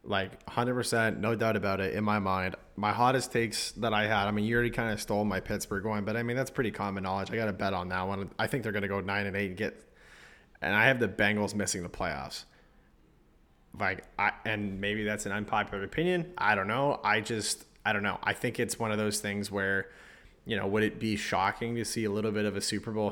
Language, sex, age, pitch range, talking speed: English, male, 20-39, 100-115 Hz, 255 wpm